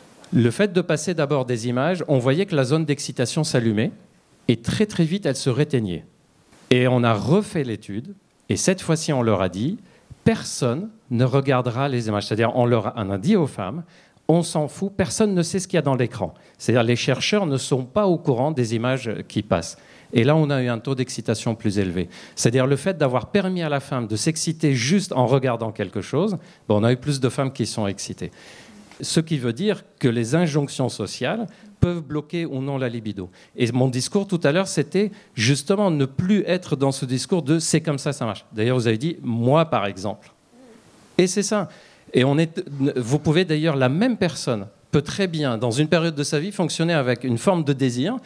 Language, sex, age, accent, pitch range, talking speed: French, male, 50-69, French, 120-170 Hz, 220 wpm